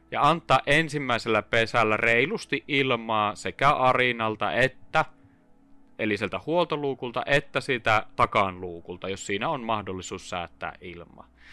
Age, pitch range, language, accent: 30-49, 100-140 Hz, Finnish, native